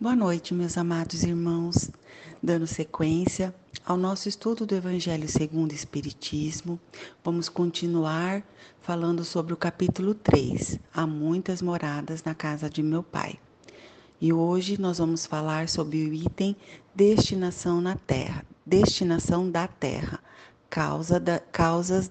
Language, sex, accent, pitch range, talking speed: Portuguese, female, Brazilian, 160-190 Hz, 130 wpm